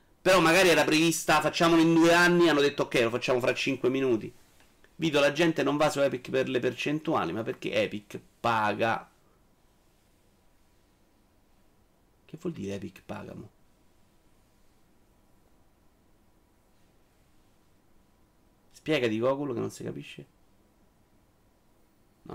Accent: native